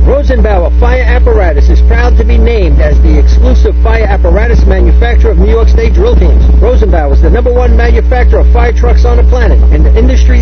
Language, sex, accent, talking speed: English, male, American, 200 wpm